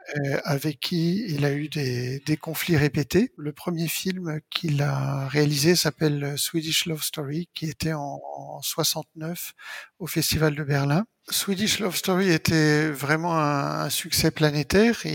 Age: 50-69